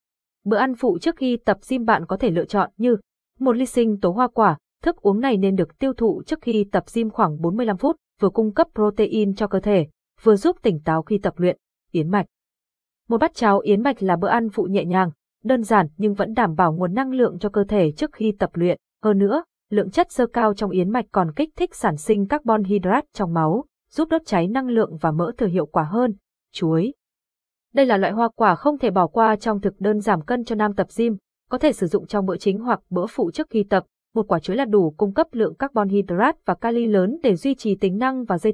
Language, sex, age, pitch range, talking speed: Vietnamese, female, 20-39, 185-240 Hz, 245 wpm